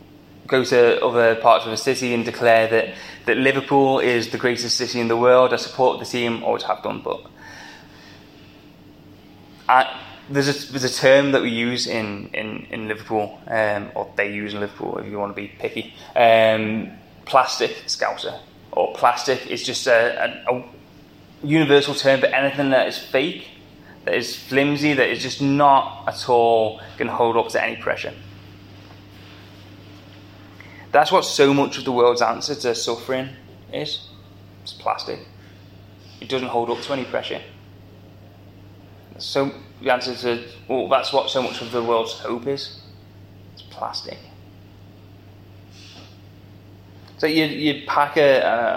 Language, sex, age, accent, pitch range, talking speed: English, male, 20-39, British, 100-130 Hz, 150 wpm